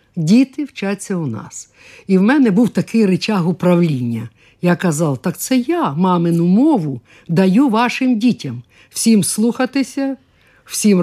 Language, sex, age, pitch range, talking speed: Ukrainian, female, 50-69, 160-225 Hz, 130 wpm